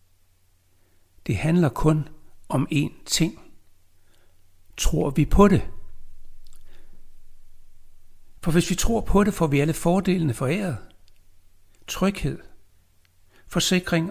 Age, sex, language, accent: 60-79, male, Danish, native